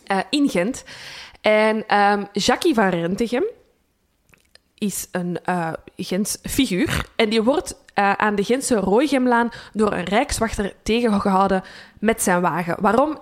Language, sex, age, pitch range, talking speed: Dutch, female, 20-39, 190-240 Hz, 125 wpm